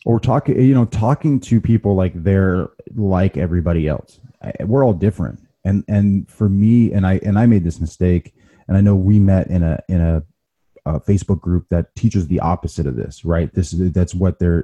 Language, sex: English, male